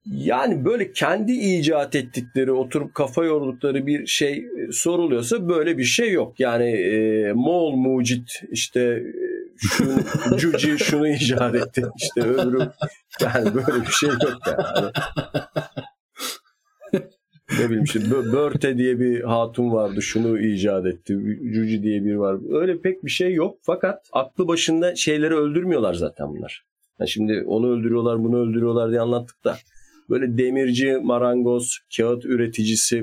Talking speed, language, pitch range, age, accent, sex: 135 wpm, Turkish, 110-150 Hz, 50-69, native, male